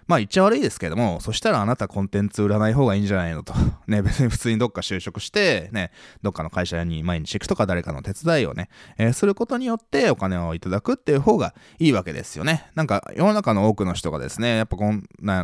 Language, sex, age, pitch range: Japanese, male, 20-39, 90-140 Hz